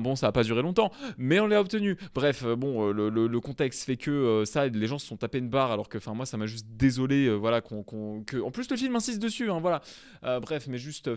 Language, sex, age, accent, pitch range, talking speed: French, male, 20-39, French, 120-175 Hz, 275 wpm